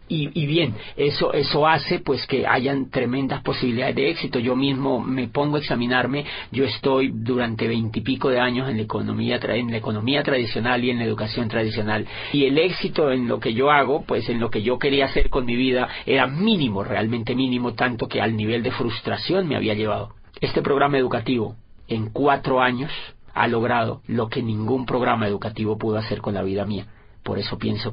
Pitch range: 110-145 Hz